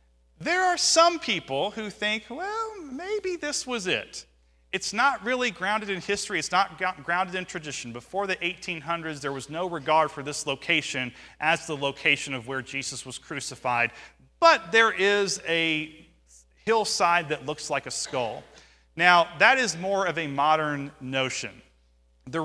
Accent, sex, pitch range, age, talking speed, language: American, male, 130-175 Hz, 40-59, 160 wpm, English